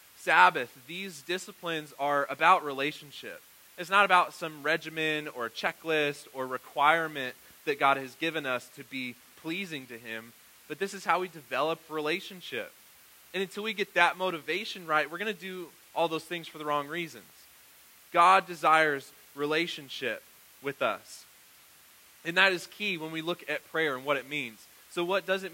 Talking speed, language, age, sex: 170 wpm, English, 20-39, male